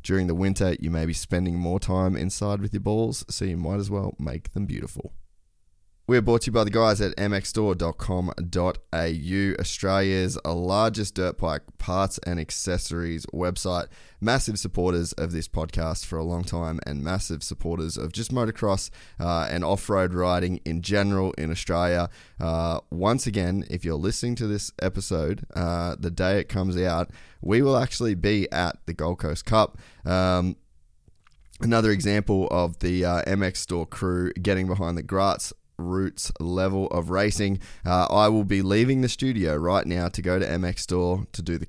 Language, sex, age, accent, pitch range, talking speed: English, male, 20-39, Australian, 85-100 Hz, 170 wpm